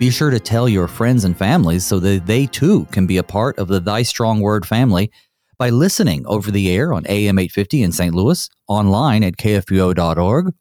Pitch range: 95-125 Hz